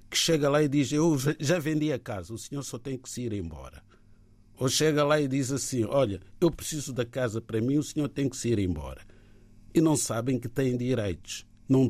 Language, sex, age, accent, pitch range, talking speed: Portuguese, male, 50-69, Brazilian, 105-145 Hz, 225 wpm